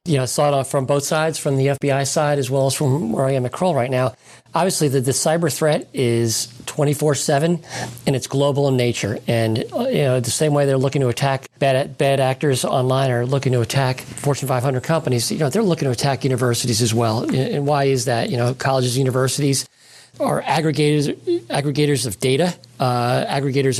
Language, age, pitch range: English, 40-59, 125-145 Hz